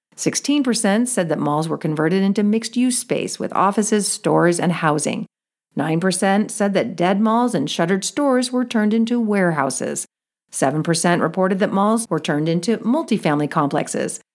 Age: 50-69